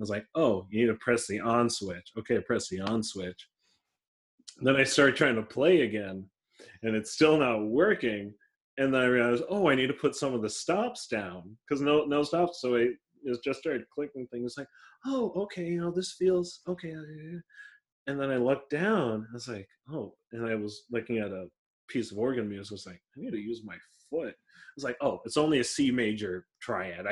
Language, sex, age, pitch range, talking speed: English, male, 30-49, 105-135 Hz, 220 wpm